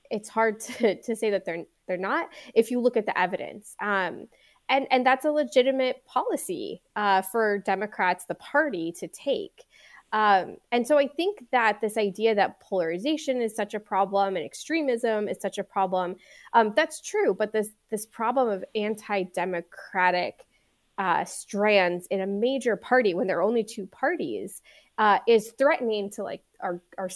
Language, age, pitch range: English, 20-39, 185-245 Hz